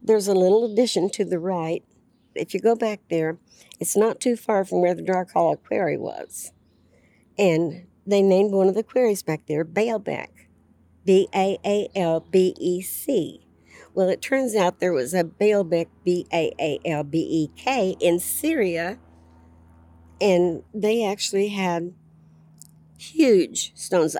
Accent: American